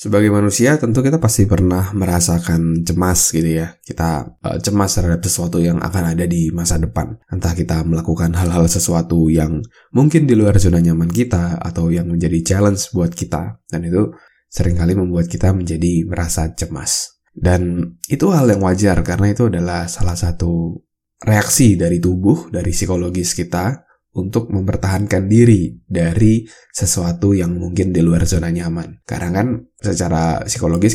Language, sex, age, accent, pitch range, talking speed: Indonesian, male, 20-39, native, 85-105 Hz, 150 wpm